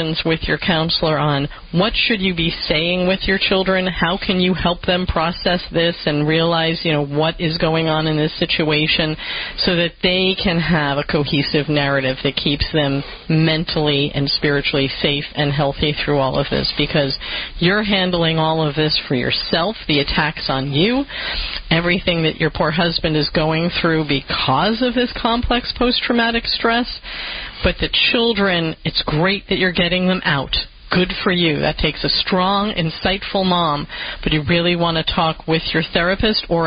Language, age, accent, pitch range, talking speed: English, 40-59, American, 150-185 Hz, 175 wpm